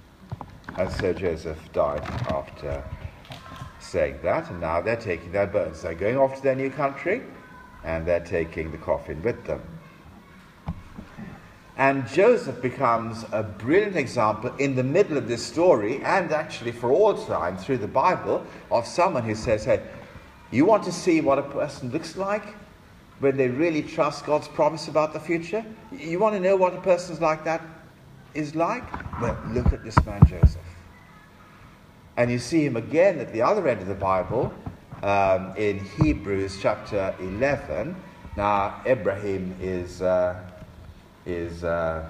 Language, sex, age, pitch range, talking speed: English, male, 50-69, 90-145 Hz, 155 wpm